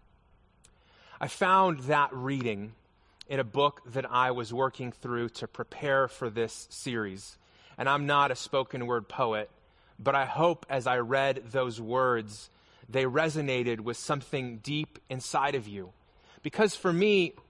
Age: 20-39